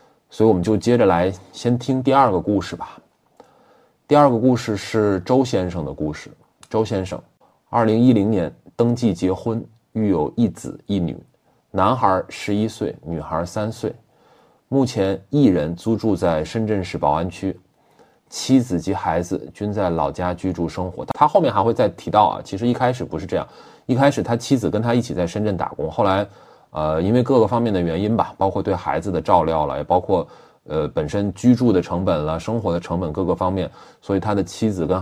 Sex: male